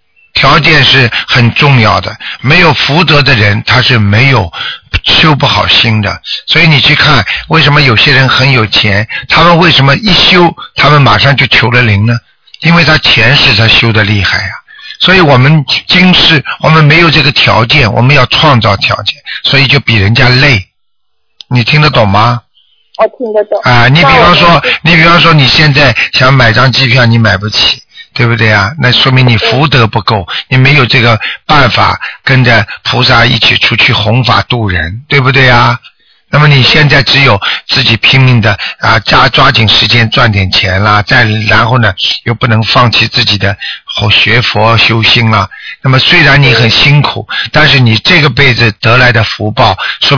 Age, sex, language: 60-79, male, Chinese